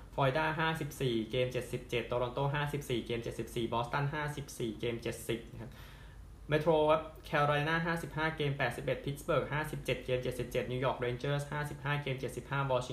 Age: 20-39